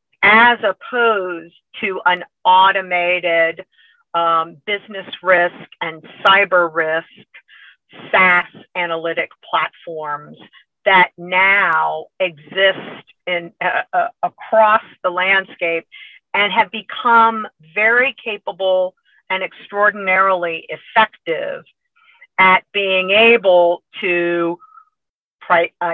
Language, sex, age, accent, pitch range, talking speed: English, female, 50-69, American, 175-220 Hz, 85 wpm